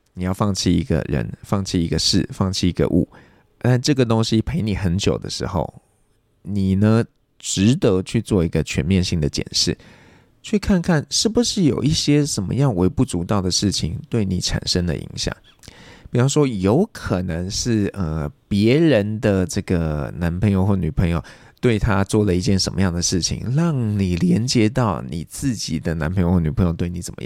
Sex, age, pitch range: male, 20-39, 90-120 Hz